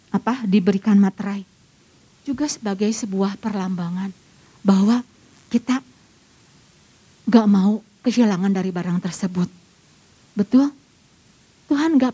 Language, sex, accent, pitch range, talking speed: Indonesian, female, native, 210-310 Hz, 90 wpm